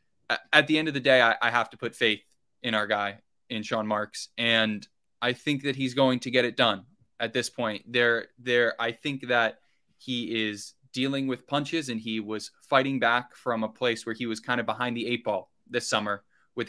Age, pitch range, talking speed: 20-39, 110-125 Hz, 215 wpm